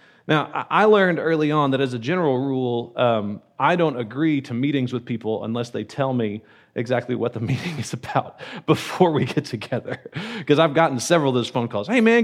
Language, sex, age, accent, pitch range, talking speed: English, male, 30-49, American, 125-175 Hz, 205 wpm